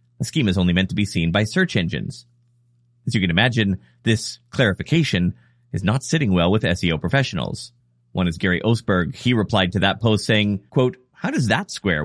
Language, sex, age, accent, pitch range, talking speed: English, male, 30-49, American, 95-135 Hz, 195 wpm